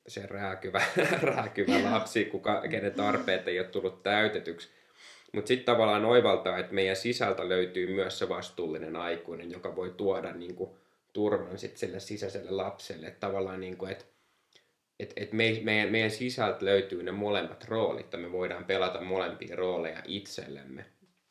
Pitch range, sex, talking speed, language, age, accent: 95-110 Hz, male, 145 wpm, Finnish, 20-39, native